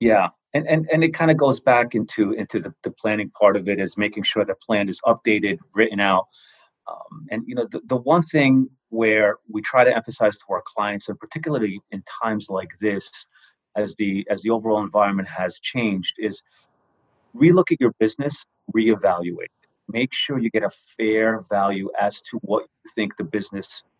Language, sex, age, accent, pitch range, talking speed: English, male, 30-49, American, 105-130 Hz, 190 wpm